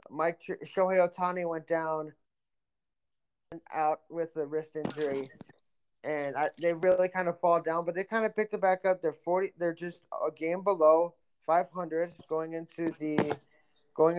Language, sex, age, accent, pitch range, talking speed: English, male, 20-39, American, 145-180 Hz, 170 wpm